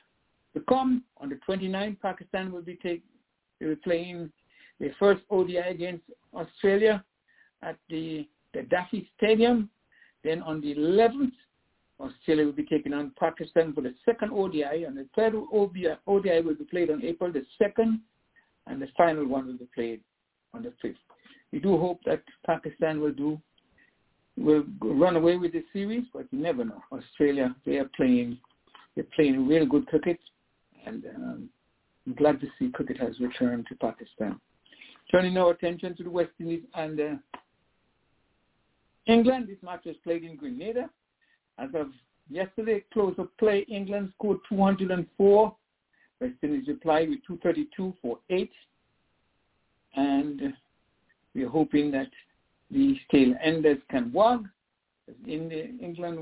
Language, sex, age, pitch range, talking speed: English, male, 60-79, 150-210 Hz, 145 wpm